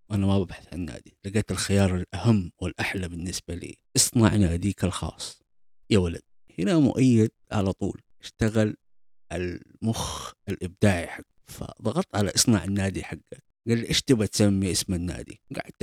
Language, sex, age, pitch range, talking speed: Arabic, male, 50-69, 90-105 Hz, 140 wpm